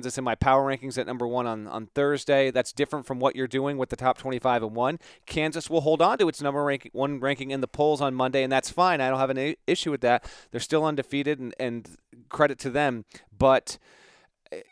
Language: English